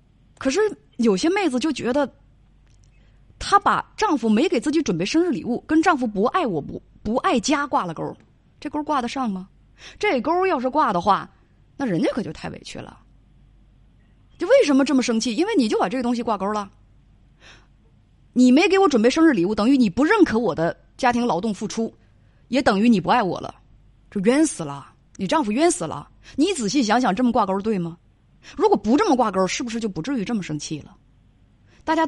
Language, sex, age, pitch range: Chinese, female, 20-39, 170-280 Hz